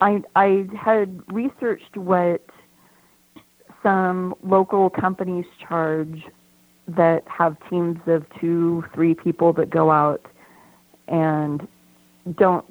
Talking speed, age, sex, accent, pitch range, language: 100 wpm, 40-59, female, American, 160-180 Hz, English